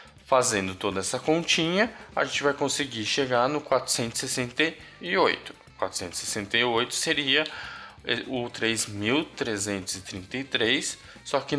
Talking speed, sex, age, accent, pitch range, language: 85 wpm, male, 20-39, Brazilian, 100-140 Hz, Portuguese